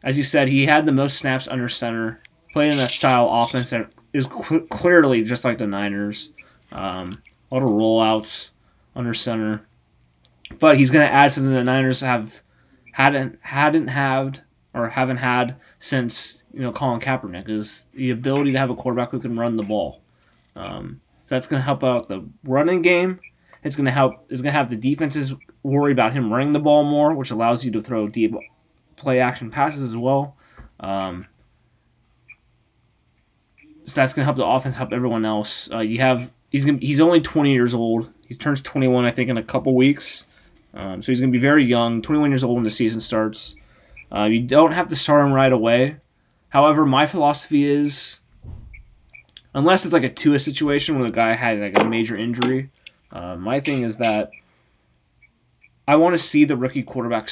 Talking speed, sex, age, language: 195 wpm, male, 20-39, English